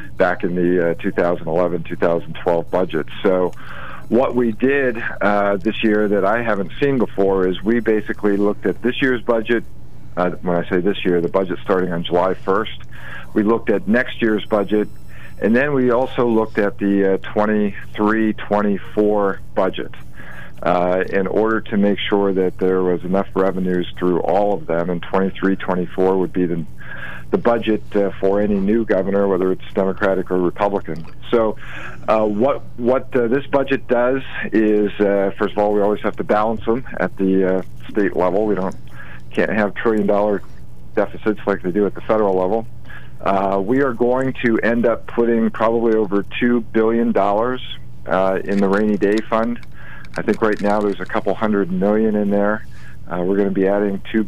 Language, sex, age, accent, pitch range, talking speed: English, male, 50-69, American, 95-110 Hz, 175 wpm